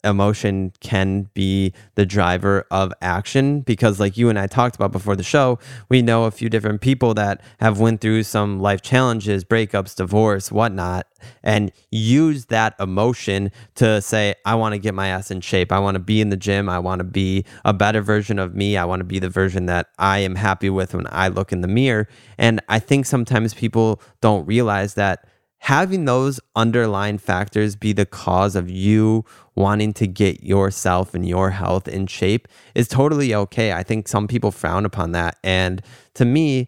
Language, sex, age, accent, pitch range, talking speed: English, male, 20-39, American, 95-115 Hz, 195 wpm